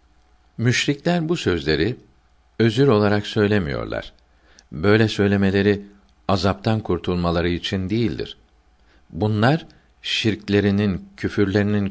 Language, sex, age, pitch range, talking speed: Turkish, male, 50-69, 75-105 Hz, 75 wpm